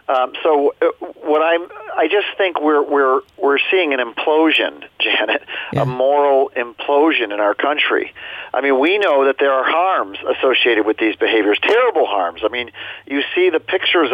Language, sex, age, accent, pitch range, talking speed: English, male, 40-59, American, 130-175 Hz, 165 wpm